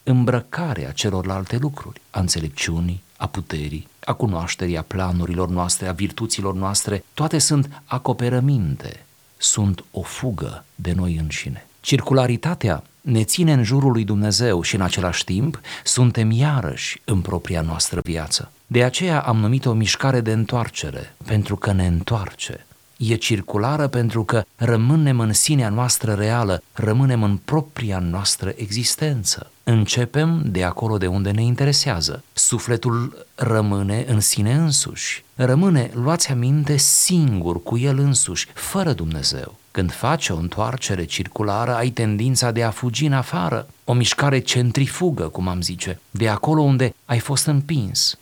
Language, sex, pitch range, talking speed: Romanian, male, 100-135 Hz, 140 wpm